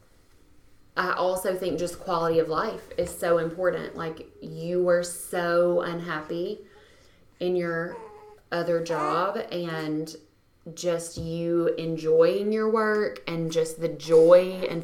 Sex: female